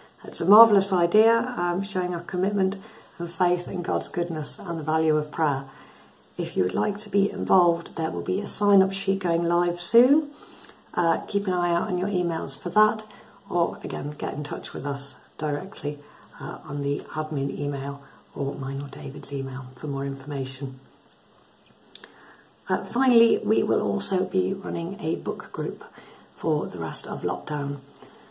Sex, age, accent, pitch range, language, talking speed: female, 50-69, British, 165-215 Hz, English, 170 wpm